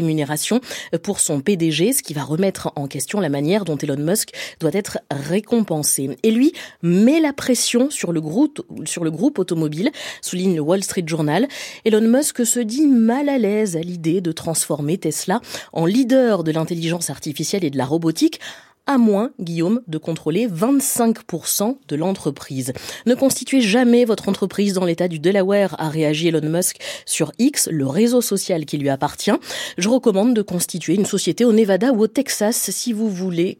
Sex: female